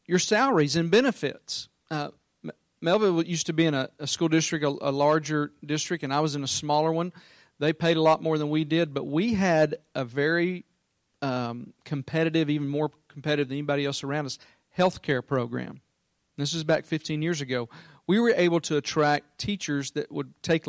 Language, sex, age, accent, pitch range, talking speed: English, male, 40-59, American, 140-175 Hz, 190 wpm